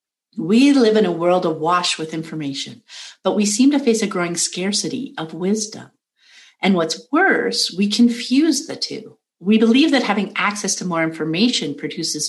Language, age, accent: English, 50-69, American